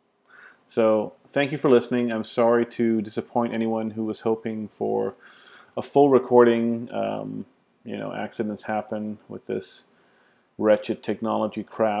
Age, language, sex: 30-49, English, male